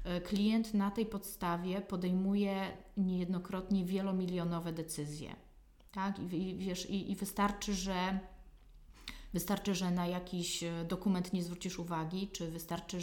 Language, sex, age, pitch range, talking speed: Polish, female, 30-49, 175-205 Hz, 120 wpm